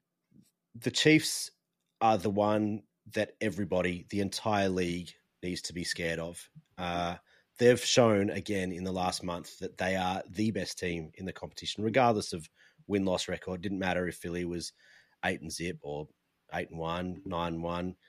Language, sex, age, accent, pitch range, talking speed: English, male, 30-49, Australian, 85-110 Hz, 175 wpm